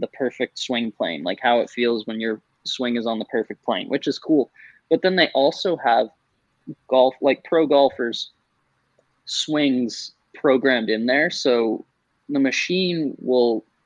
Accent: American